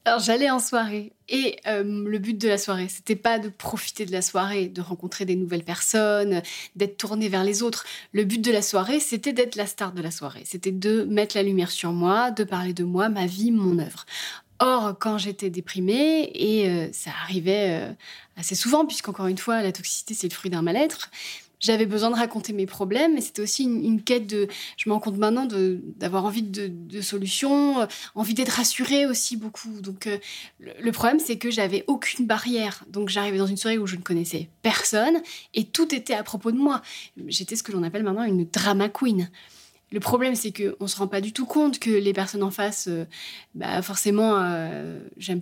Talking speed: 215 wpm